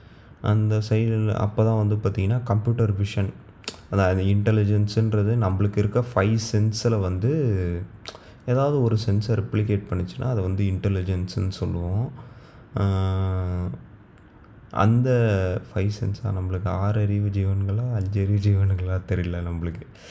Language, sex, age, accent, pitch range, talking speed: Tamil, male, 20-39, native, 95-115 Hz, 100 wpm